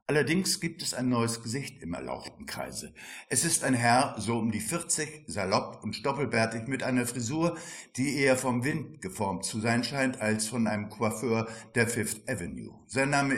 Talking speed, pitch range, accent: 180 wpm, 110-130 Hz, German